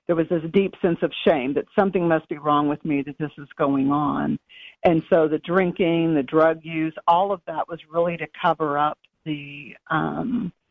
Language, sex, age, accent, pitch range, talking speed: English, female, 50-69, American, 165-215 Hz, 200 wpm